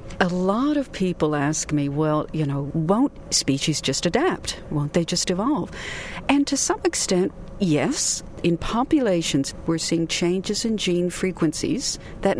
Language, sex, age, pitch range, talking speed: English, female, 50-69, 165-210 Hz, 150 wpm